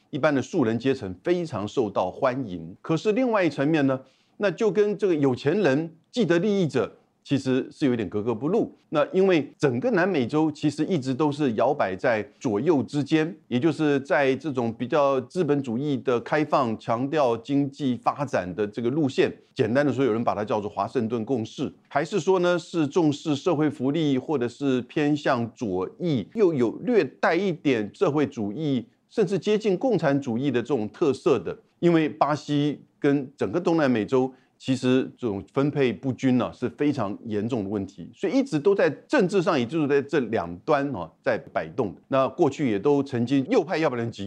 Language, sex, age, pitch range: Chinese, male, 50-69, 115-155 Hz